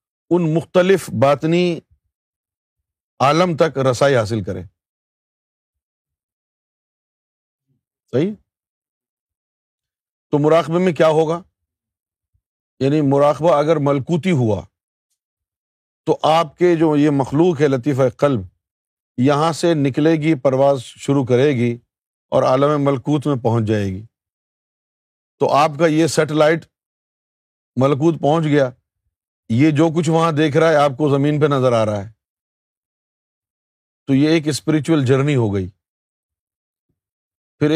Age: 50-69